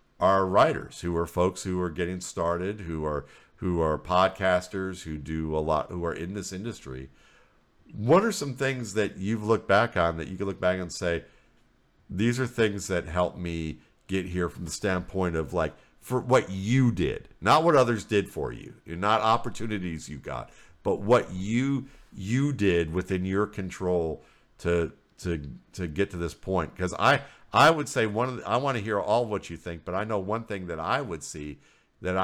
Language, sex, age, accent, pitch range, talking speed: English, male, 50-69, American, 85-105 Hz, 205 wpm